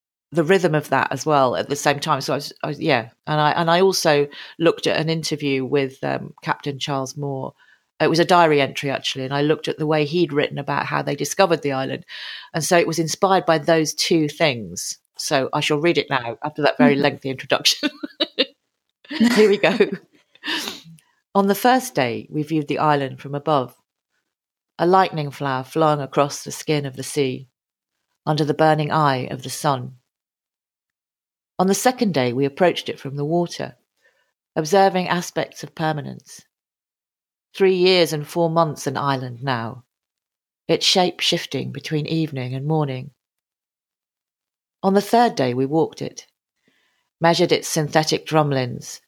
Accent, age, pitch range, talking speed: British, 40-59, 140-170 Hz, 170 wpm